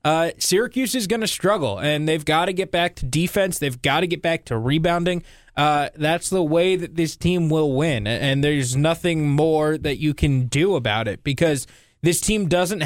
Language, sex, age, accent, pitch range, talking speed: English, male, 20-39, American, 140-170 Hz, 205 wpm